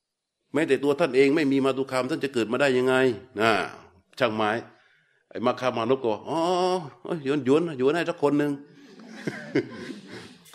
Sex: male